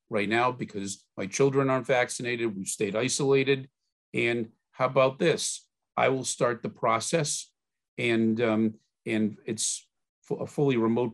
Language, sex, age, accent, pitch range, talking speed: English, male, 50-69, American, 110-130 Hz, 145 wpm